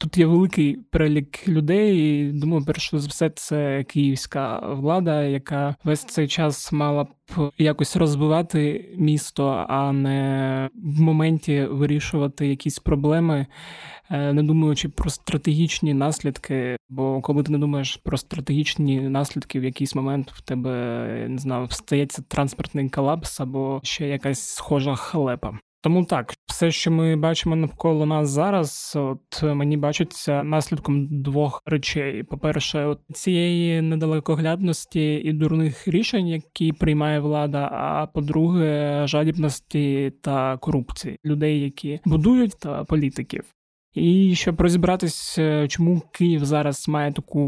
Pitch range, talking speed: 140-160 Hz, 125 wpm